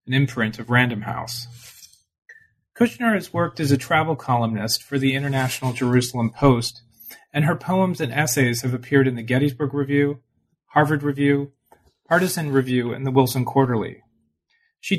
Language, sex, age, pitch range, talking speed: English, male, 40-59, 120-150 Hz, 150 wpm